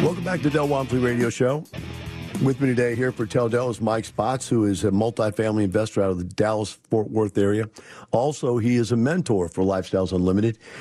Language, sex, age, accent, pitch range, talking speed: English, male, 50-69, American, 95-120 Hz, 205 wpm